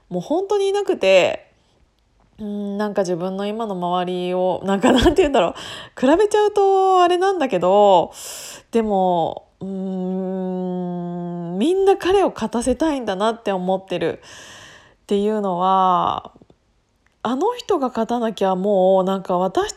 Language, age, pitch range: Japanese, 20-39, 190-305 Hz